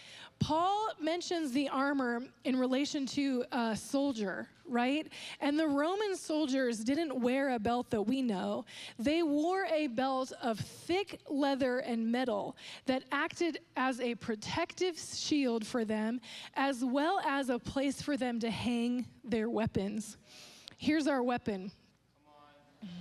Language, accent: English, American